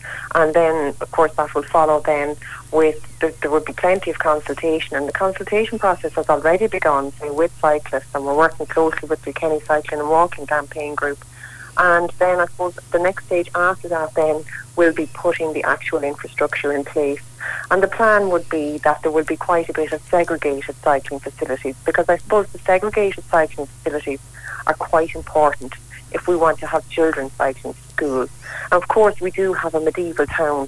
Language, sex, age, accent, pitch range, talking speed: English, female, 40-59, Irish, 145-165 Hz, 190 wpm